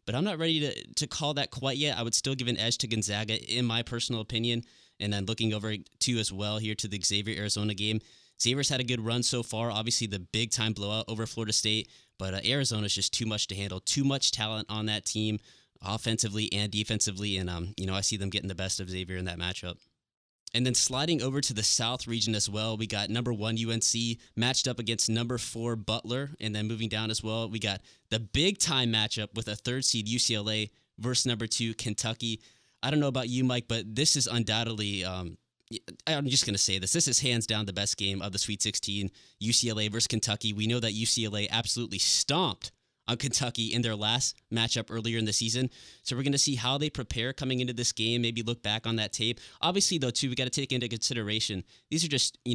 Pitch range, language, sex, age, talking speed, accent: 105-120 Hz, English, male, 20-39, 230 wpm, American